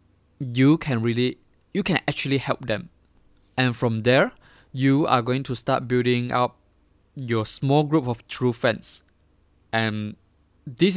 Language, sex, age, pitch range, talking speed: English, male, 20-39, 110-140 Hz, 140 wpm